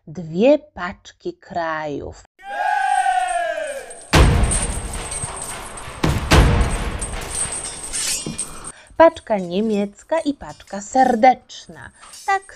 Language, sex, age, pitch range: Polish, female, 30-49, 170-270 Hz